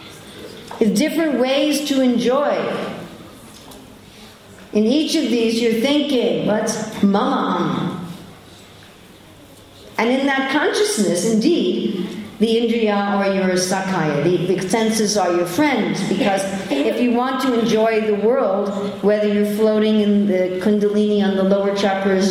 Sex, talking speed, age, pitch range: female, 130 wpm, 50-69, 185-245 Hz